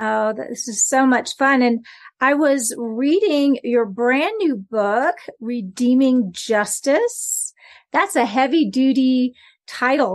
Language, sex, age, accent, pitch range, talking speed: English, female, 40-59, American, 230-265 Hz, 125 wpm